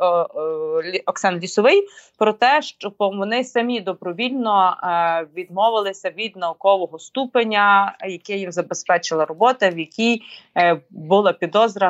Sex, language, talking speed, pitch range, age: female, Ukrainian, 100 wpm, 185-240 Hz, 20-39